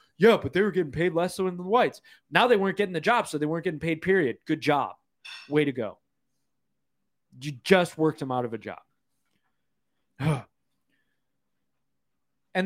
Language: English